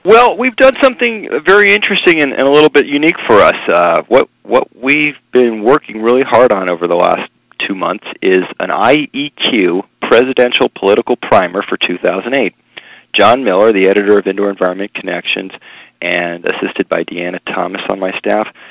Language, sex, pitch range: English, male, 95-130 Hz